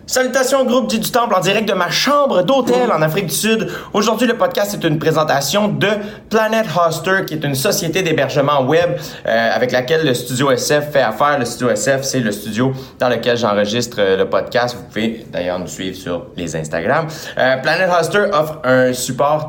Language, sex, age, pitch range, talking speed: French, male, 30-49, 105-155 Hz, 190 wpm